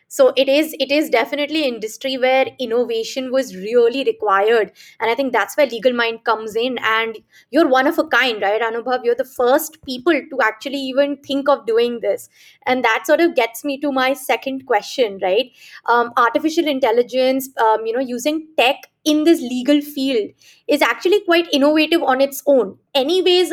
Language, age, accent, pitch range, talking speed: English, 20-39, Indian, 245-295 Hz, 180 wpm